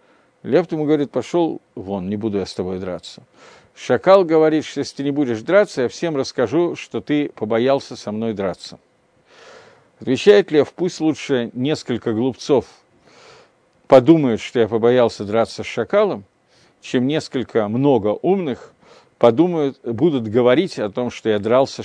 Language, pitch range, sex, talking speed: Russian, 115-165 Hz, male, 145 wpm